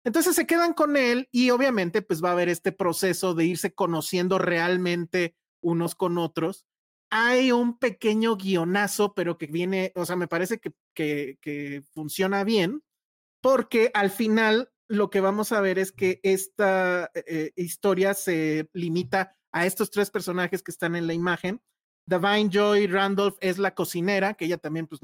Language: Spanish